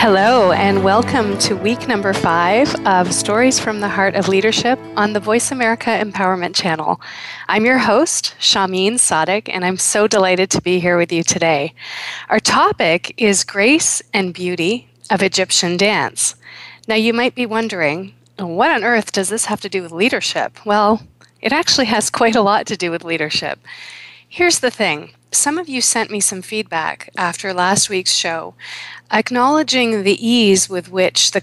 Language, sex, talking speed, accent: English, female, 170 wpm, American